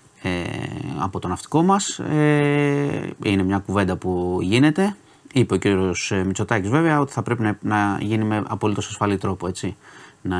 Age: 30-49